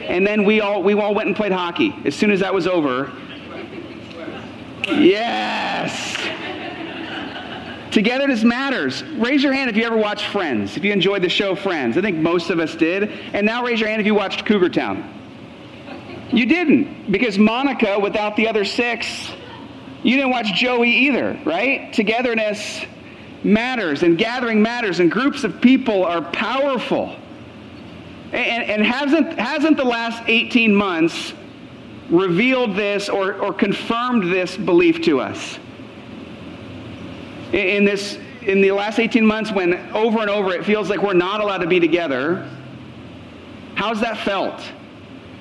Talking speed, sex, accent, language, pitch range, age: 150 wpm, male, American, English, 195-250 Hz, 40-59